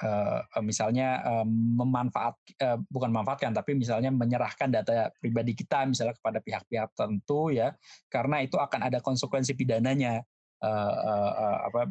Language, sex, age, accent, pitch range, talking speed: Indonesian, male, 20-39, native, 115-135 Hz, 110 wpm